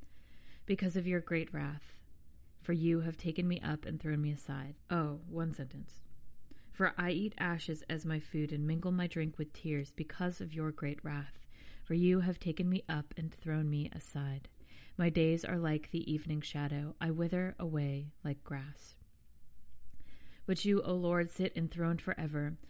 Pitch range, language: 150-175 Hz, English